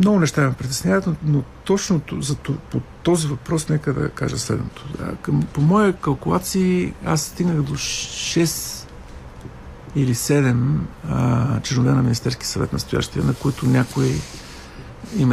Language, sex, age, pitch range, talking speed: Bulgarian, male, 50-69, 110-150 Hz, 130 wpm